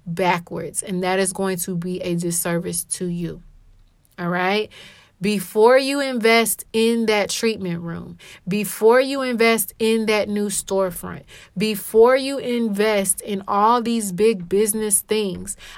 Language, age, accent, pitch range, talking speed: English, 20-39, American, 185-215 Hz, 135 wpm